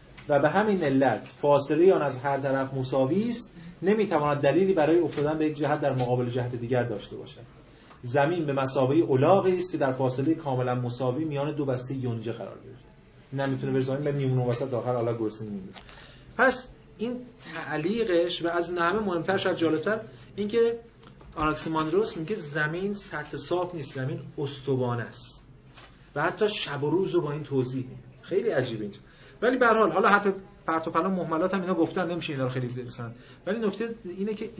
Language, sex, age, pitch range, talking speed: Persian, male, 30-49, 130-185 Hz, 175 wpm